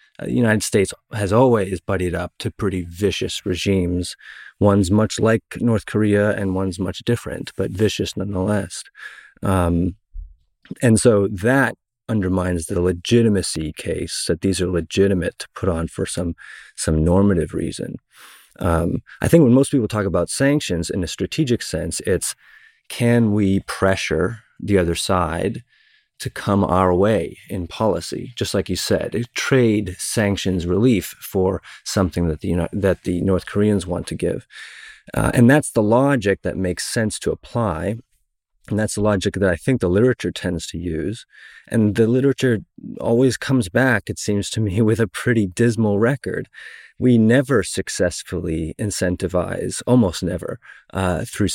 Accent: American